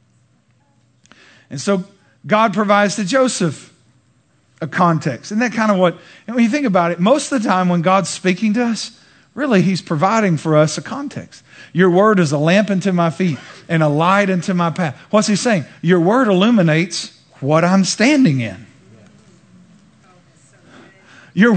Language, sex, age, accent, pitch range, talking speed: English, male, 50-69, American, 175-220 Hz, 165 wpm